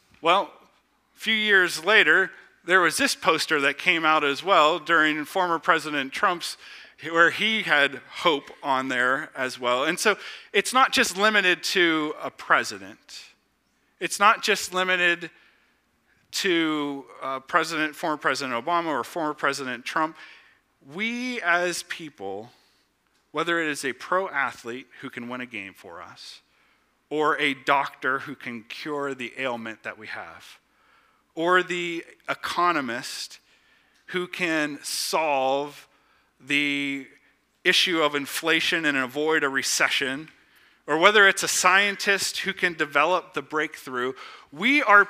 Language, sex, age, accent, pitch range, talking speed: English, male, 40-59, American, 140-185 Hz, 135 wpm